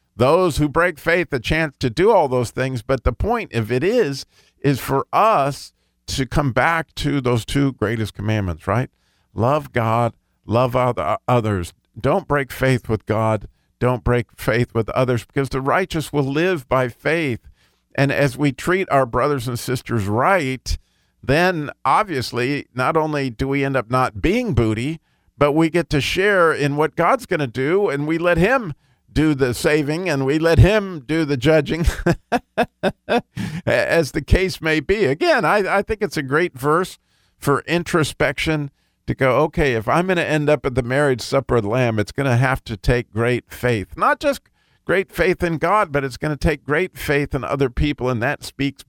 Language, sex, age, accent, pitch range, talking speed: English, male, 50-69, American, 115-150 Hz, 190 wpm